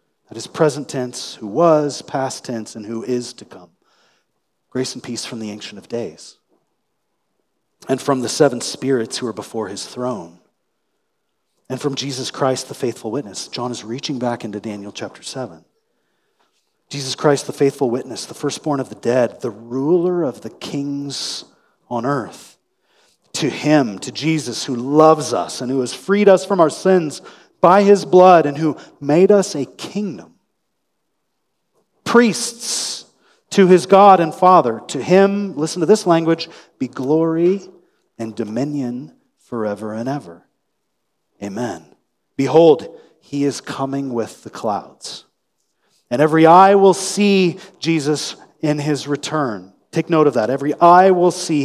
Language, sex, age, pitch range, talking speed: English, male, 40-59, 125-170 Hz, 150 wpm